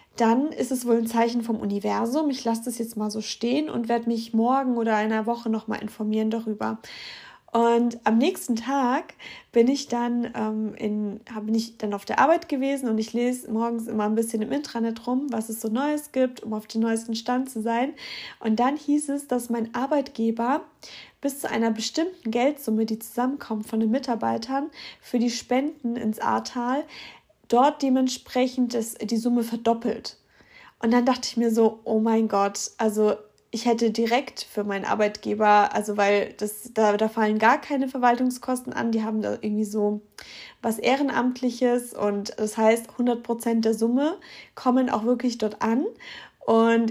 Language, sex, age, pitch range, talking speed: German, female, 20-39, 220-255 Hz, 170 wpm